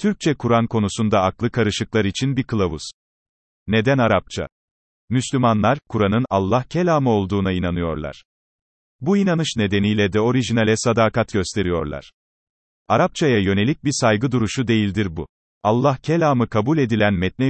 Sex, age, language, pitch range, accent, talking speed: male, 40-59, Turkish, 100-135 Hz, native, 120 wpm